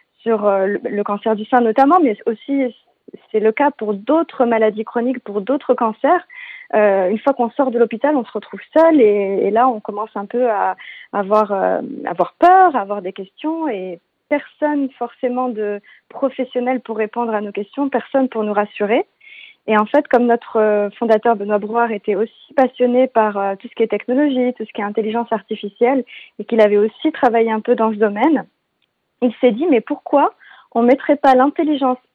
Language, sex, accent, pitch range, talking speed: French, female, French, 220-275 Hz, 190 wpm